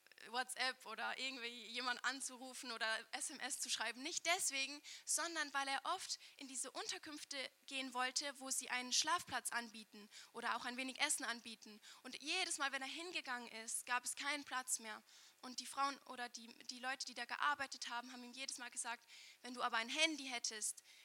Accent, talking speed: German, 185 wpm